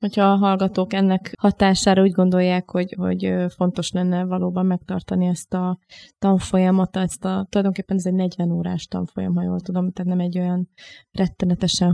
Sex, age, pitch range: female, 20-39, 175-190 Hz